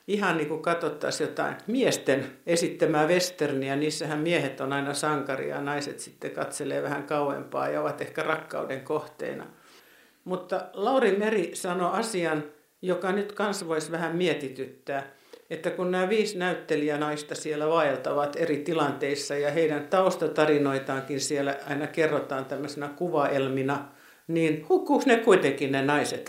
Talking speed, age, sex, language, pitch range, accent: 130 wpm, 60-79, male, Finnish, 145-175 Hz, native